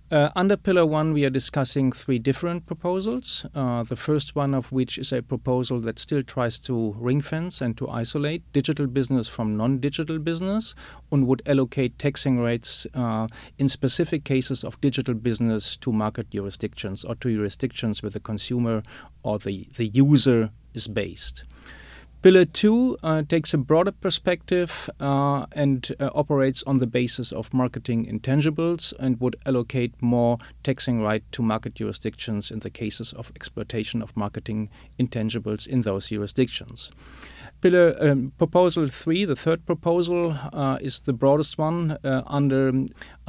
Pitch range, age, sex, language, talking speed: 115-145 Hz, 40-59, male, English, 155 wpm